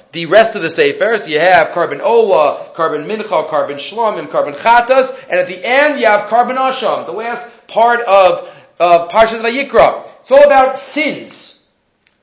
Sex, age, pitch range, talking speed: male, 40-59, 195-240 Hz, 165 wpm